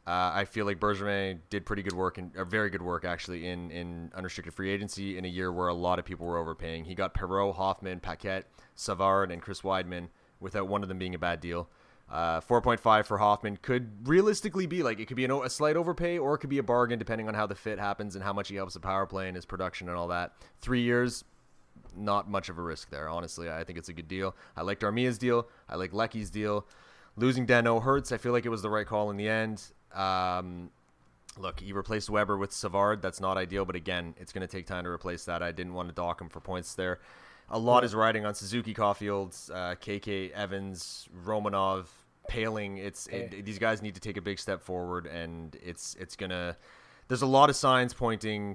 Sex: male